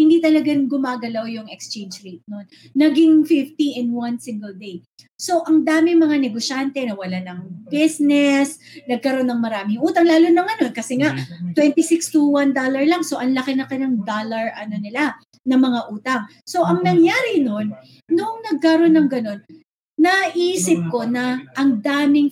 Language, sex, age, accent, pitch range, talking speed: Filipino, female, 20-39, native, 220-320 Hz, 165 wpm